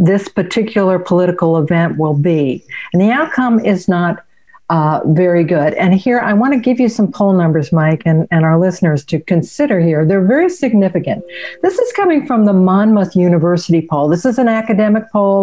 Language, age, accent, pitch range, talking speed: English, 50-69, American, 180-230 Hz, 185 wpm